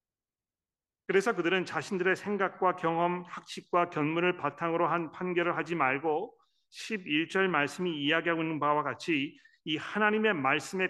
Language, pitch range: Korean, 140-180 Hz